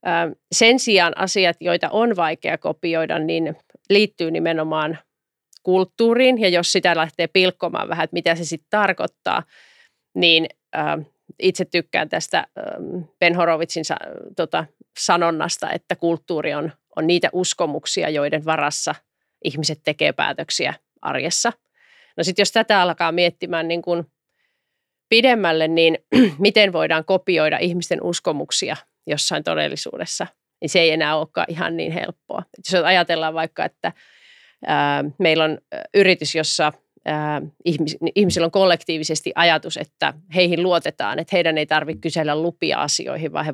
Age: 30-49